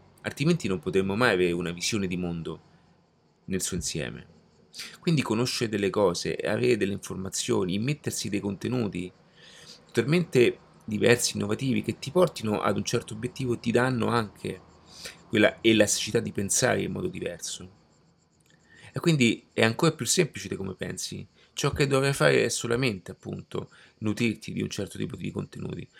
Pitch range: 95-120 Hz